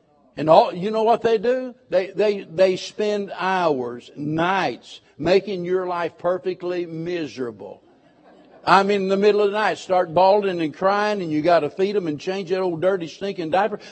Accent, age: American, 60-79